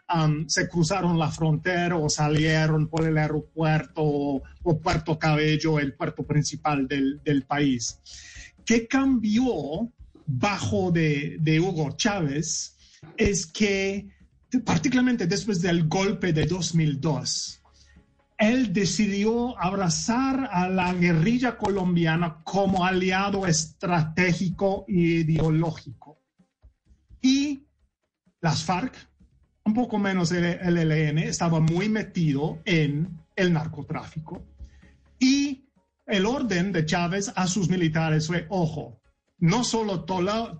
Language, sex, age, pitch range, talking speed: Spanish, male, 30-49, 155-200 Hz, 110 wpm